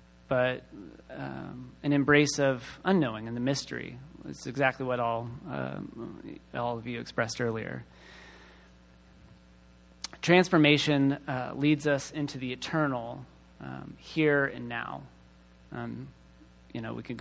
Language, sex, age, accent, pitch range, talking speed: English, male, 30-49, American, 115-150 Hz, 120 wpm